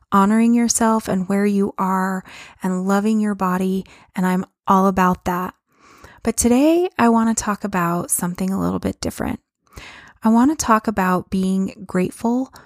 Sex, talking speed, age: female, 160 wpm, 20-39